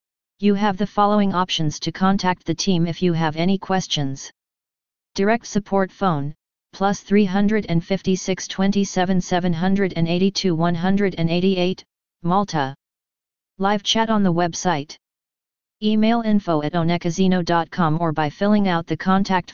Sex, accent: female, American